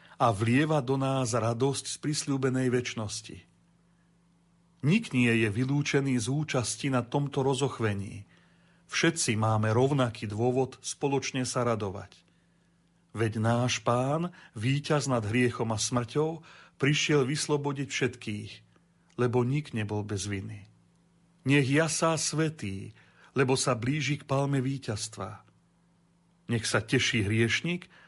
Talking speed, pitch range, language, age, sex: 115 wpm, 115-150 Hz, Slovak, 40-59, male